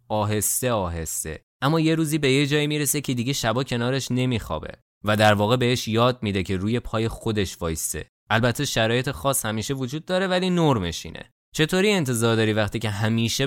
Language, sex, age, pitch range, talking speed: Persian, male, 20-39, 100-135 Hz, 180 wpm